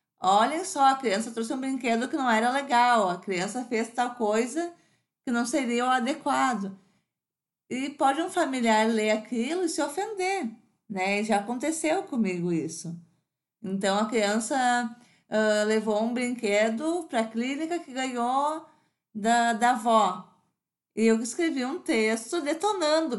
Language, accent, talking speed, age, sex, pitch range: Portuguese, Brazilian, 140 wpm, 20-39, female, 210-290 Hz